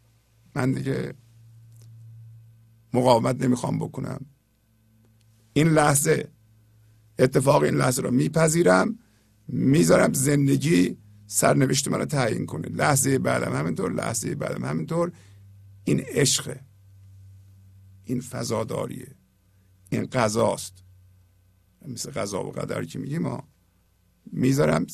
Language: Persian